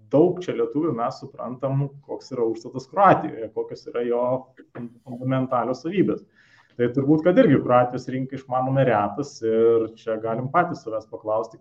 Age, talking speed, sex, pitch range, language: 30-49, 150 wpm, male, 115-150 Hz, English